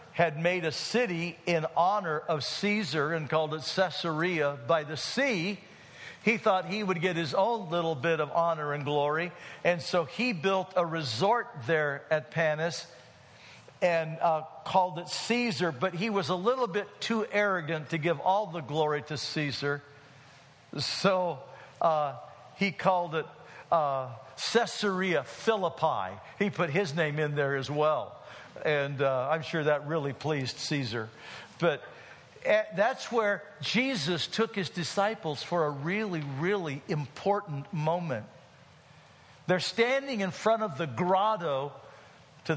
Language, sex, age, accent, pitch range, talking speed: English, male, 60-79, American, 145-190 Hz, 145 wpm